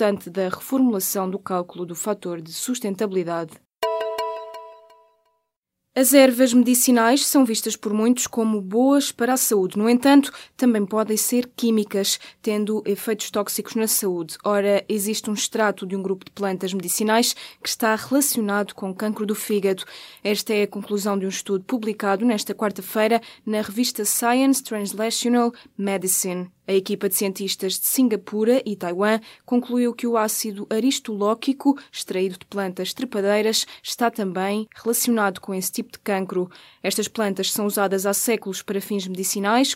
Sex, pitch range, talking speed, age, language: female, 195-230 Hz, 150 wpm, 20-39, Portuguese